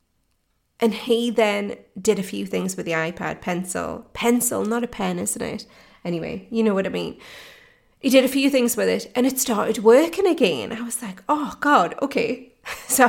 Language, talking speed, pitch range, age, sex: English, 195 wpm, 195-245 Hz, 30-49, female